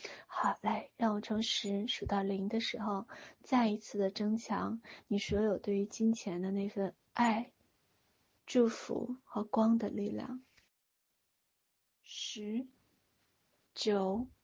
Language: Chinese